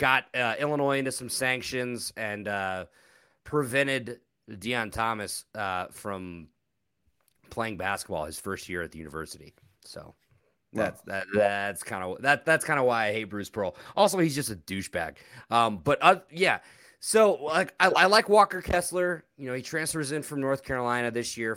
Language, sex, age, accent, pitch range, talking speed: English, male, 30-49, American, 105-135 Hz, 170 wpm